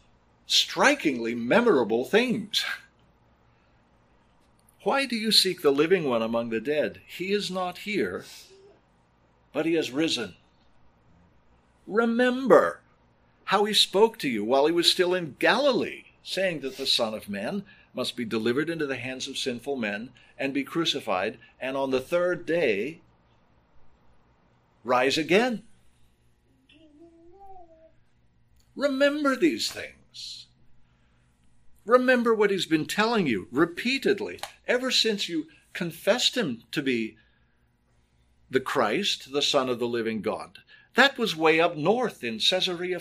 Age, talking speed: 60-79, 125 wpm